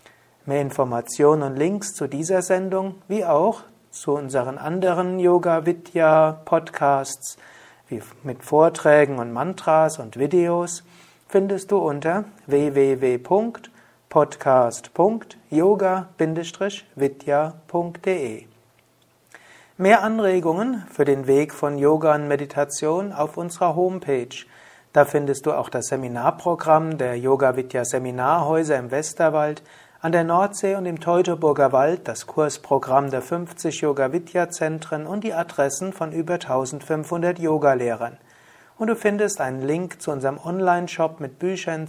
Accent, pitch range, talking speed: German, 140-175 Hz, 105 wpm